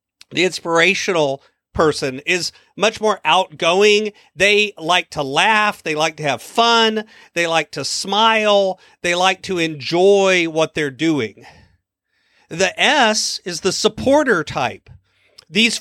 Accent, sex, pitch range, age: American, male, 155-205 Hz, 40-59